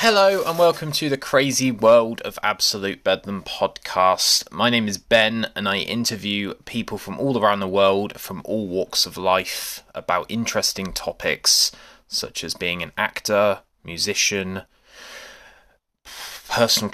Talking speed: 140 wpm